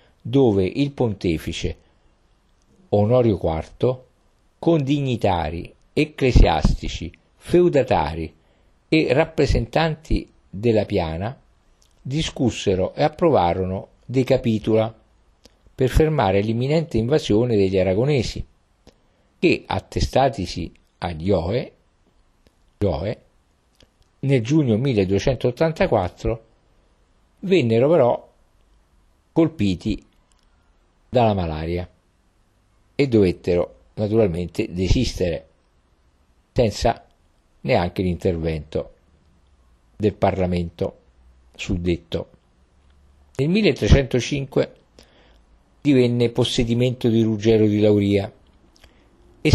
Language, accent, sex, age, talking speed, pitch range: Italian, native, male, 50-69, 65 wpm, 85-120 Hz